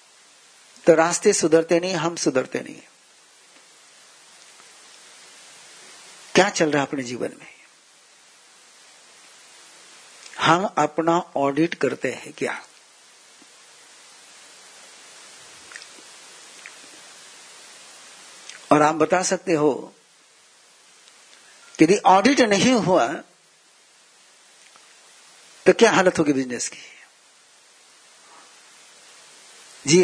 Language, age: Hindi, 60-79